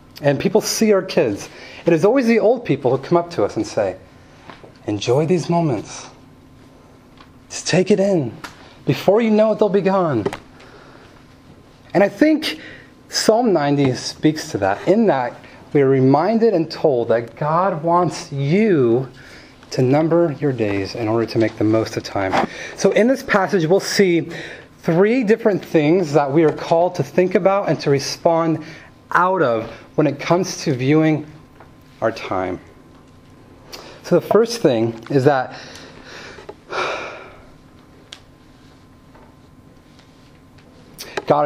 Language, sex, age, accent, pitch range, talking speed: English, male, 30-49, American, 140-190 Hz, 140 wpm